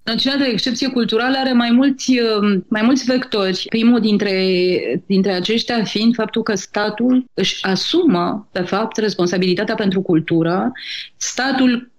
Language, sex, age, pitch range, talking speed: Romanian, female, 30-49, 185-225 Hz, 130 wpm